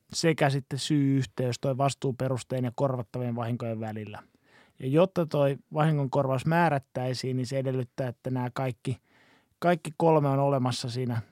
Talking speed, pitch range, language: 145 wpm, 130-145 Hz, Finnish